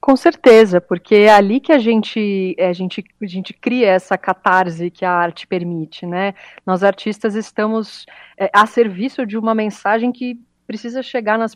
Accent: Brazilian